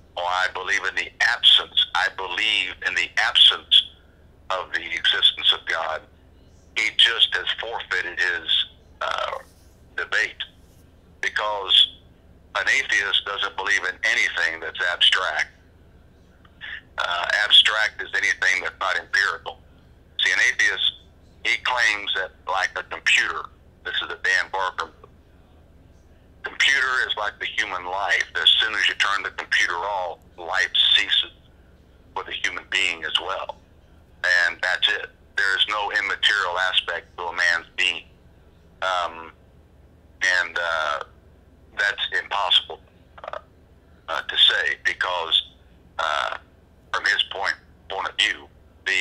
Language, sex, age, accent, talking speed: English, male, 60-79, American, 125 wpm